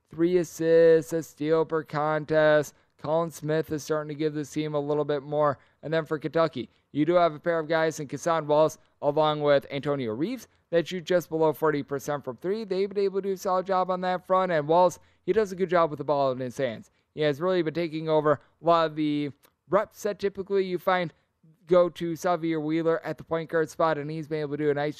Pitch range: 150-180 Hz